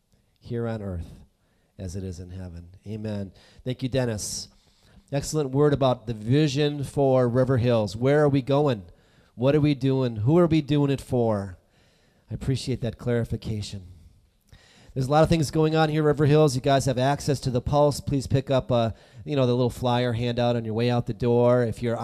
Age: 40-59